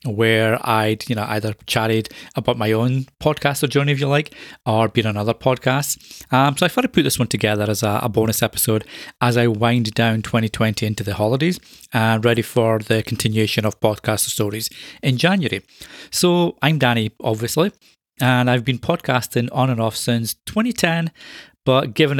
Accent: British